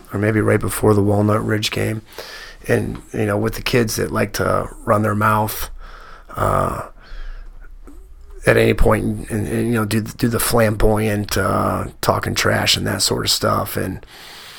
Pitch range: 105-125 Hz